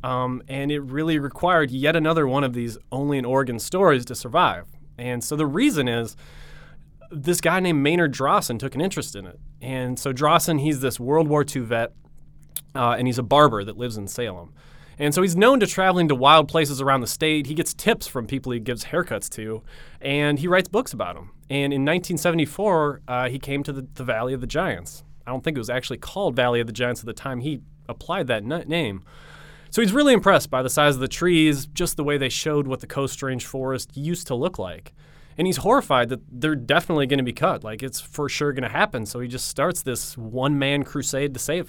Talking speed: 220 wpm